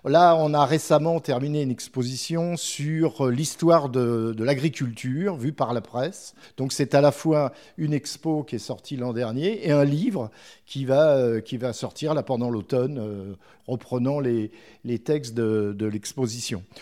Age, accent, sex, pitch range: 50-69, French, male, 125-165 Hz